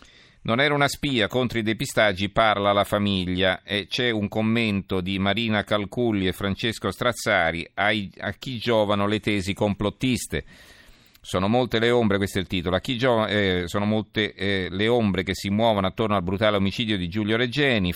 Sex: male